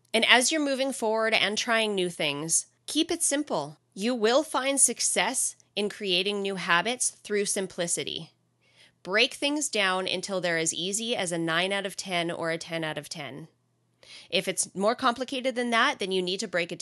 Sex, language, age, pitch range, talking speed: female, English, 20-39, 175-225 Hz, 190 wpm